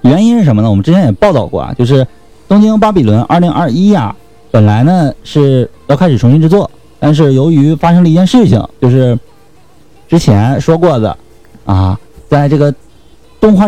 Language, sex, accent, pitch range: Chinese, male, native, 115-170 Hz